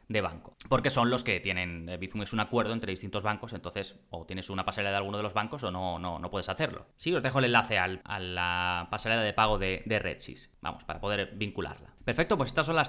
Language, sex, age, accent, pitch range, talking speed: Spanish, male, 20-39, Spanish, 105-135 Hz, 245 wpm